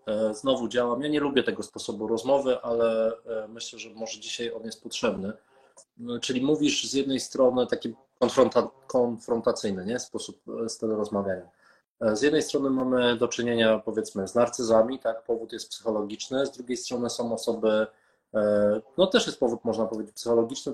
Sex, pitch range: male, 110-125 Hz